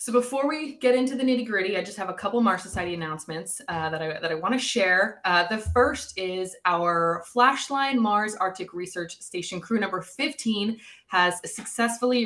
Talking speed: 185 wpm